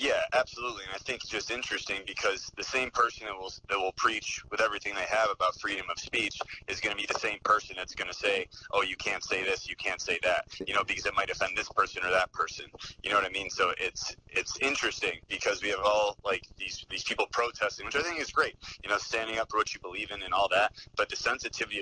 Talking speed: 260 wpm